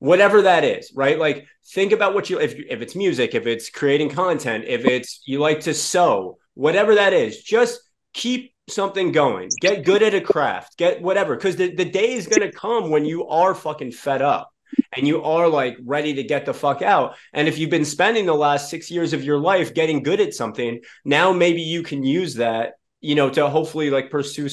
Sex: male